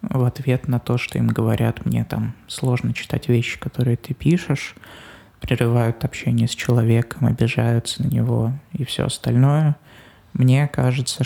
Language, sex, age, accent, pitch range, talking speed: Russian, male, 20-39, native, 120-135 Hz, 145 wpm